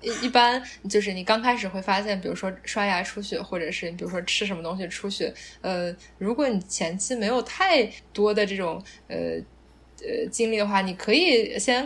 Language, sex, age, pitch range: Chinese, female, 10-29, 180-230 Hz